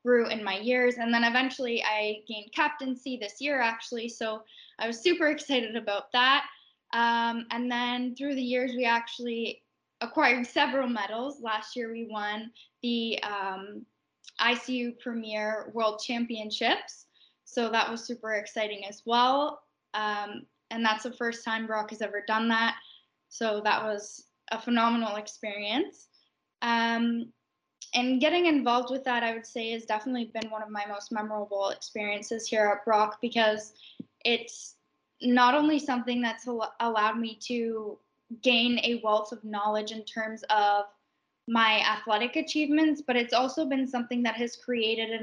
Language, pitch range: English, 215-245 Hz